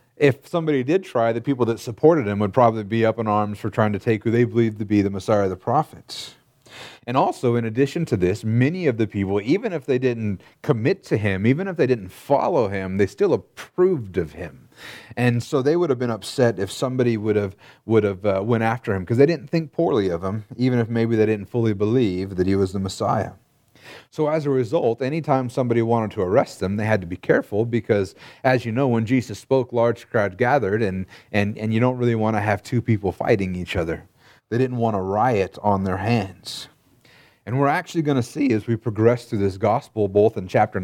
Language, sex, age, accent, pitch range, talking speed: English, male, 30-49, American, 105-130 Hz, 230 wpm